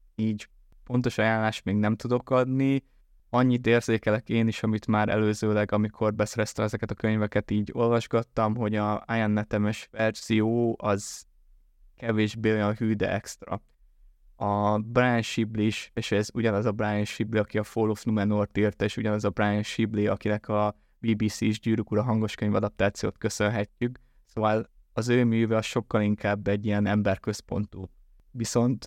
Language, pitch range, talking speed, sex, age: Hungarian, 105-115 Hz, 150 wpm, male, 20-39